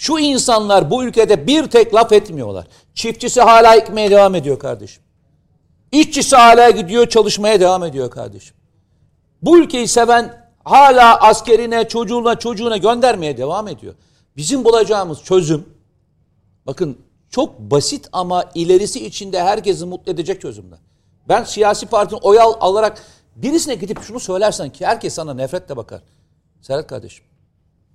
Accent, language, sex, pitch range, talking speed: native, Turkish, male, 160-225 Hz, 130 wpm